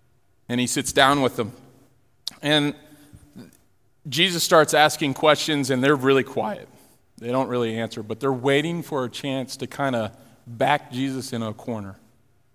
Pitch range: 120-150 Hz